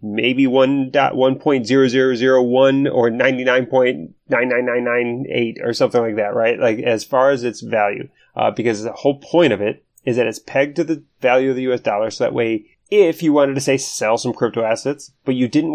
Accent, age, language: American, 30-49, English